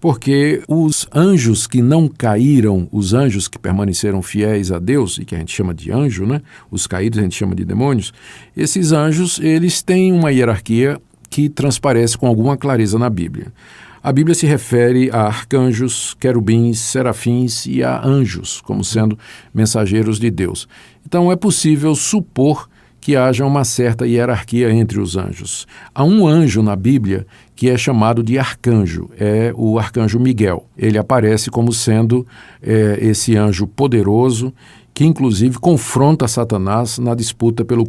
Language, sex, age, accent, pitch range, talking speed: Portuguese, male, 50-69, Brazilian, 110-135 Hz, 155 wpm